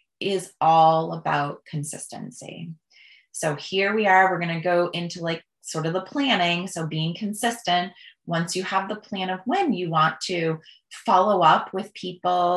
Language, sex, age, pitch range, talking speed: English, female, 20-39, 160-200 Hz, 165 wpm